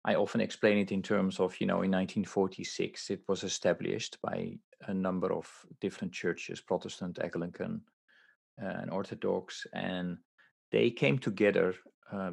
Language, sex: English, male